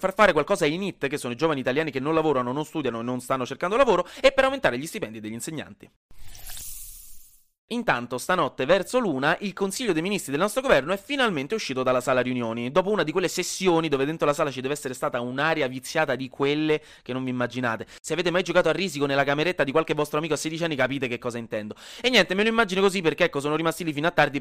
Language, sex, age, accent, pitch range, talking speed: Italian, male, 30-49, native, 125-180 Hz, 240 wpm